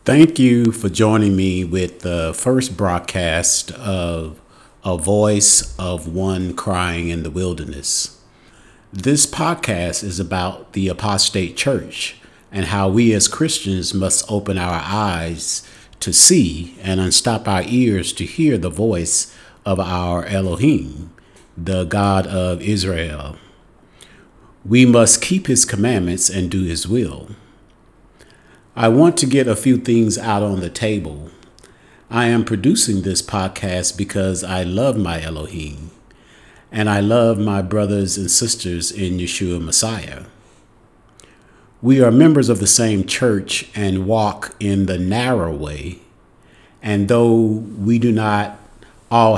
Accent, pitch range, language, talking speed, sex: American, 90-110 Hz, English, 135 wpm, male